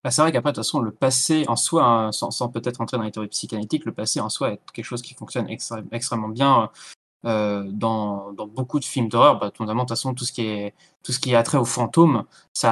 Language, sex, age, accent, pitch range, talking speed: French, male, 20-39, French, 110-135 Hz, 250 wpm